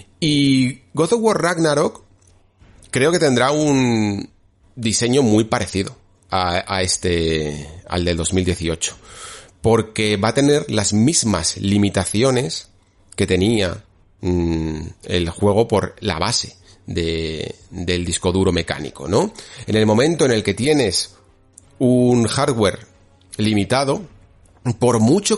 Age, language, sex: 30-49, Spanish, male